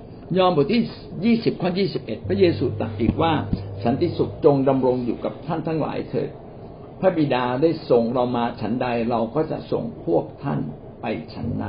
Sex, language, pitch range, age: male, Thai, 105-140 Hz, 60-79